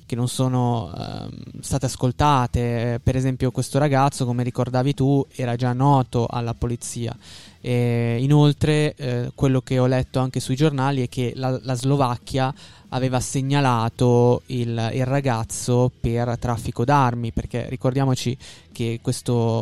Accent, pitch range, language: native, 120-135 Hz, Italian